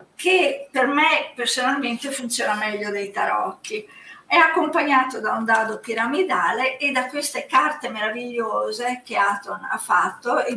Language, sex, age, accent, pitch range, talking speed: Italian, female, 50-69, native, 230-290 Hz, 135 wpm